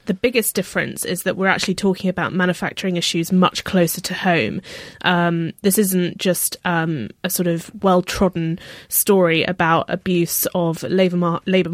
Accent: British